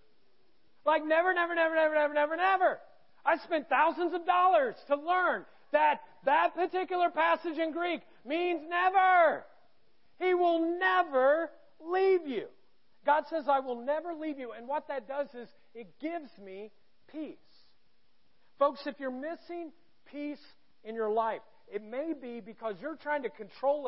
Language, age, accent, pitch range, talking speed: English, 40-59, American, 210-315 Hz, 150 wpm